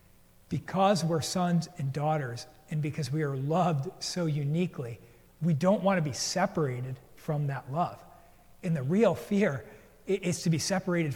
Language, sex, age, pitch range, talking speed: English, male, 40-59, 145-180 Hz, 155 wpm